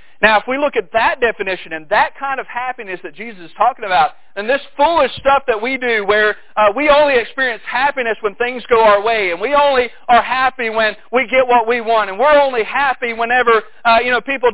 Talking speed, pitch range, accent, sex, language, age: 225 wpm, 220-285 Hz, American, male, English, 40-59